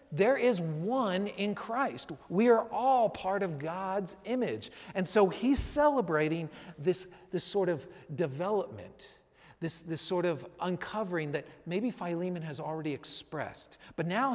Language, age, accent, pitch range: English, 40-59, American, 160-225 Hz